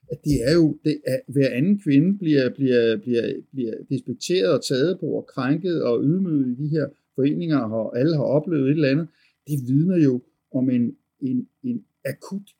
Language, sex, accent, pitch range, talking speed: Danish, male, native, 125-155 Hz, 190 wpm